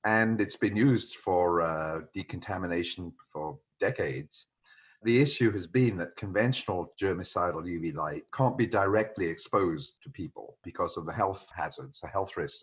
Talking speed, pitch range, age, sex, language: 150 wpm, 85-110 Hz, 50-69, male, English